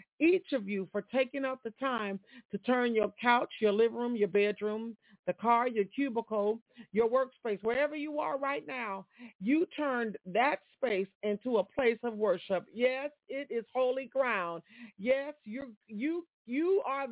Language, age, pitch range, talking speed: English, 40-59, 220-280 Hz, 165 wpm